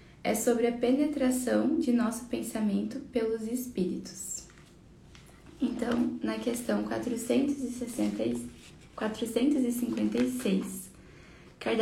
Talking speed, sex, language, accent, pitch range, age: 65 wpm, female, Portuguese, Brazilian, 190-250 Hz, 10-29